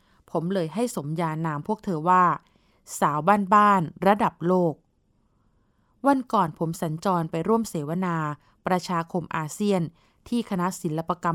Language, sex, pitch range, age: Thai, female, 165-210 Hz, 20-39